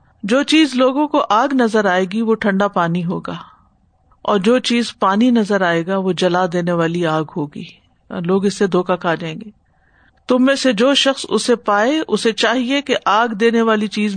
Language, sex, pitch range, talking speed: Urdu, female, 185-225 Hz, 195 wpm